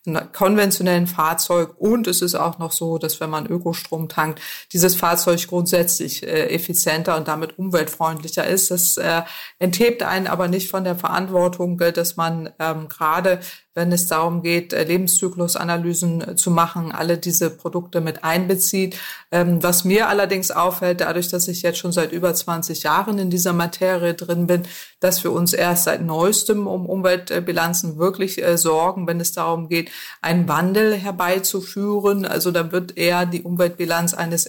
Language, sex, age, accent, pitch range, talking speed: German, female, 30-49, German, 170-185 Hz, 155 wpm